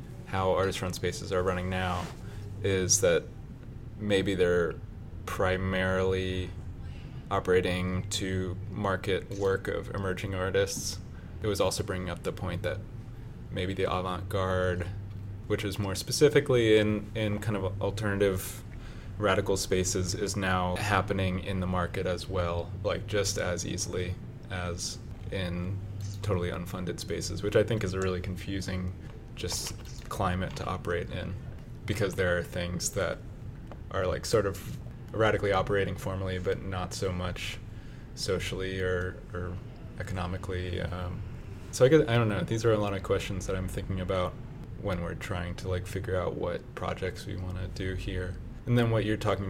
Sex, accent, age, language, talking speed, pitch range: male, American, 20-39, English, 150 wpm, 90-105 Hz